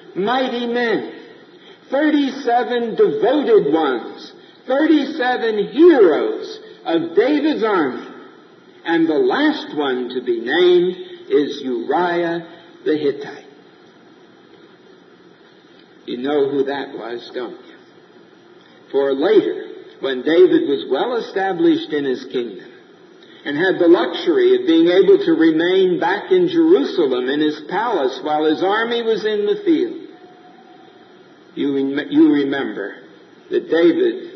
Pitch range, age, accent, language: 330-390 Hz, 60-79, American, English